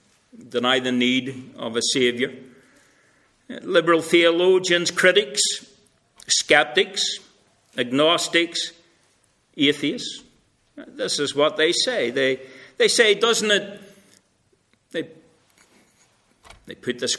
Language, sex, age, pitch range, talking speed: English, male, 60-79, 125-175 Hz, 90 wpm